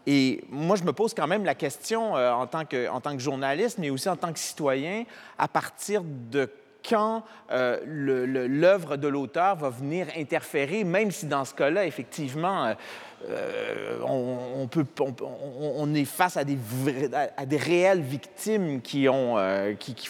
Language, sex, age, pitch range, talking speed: French, male, 30-49, 130-175 Hz, 175 wpm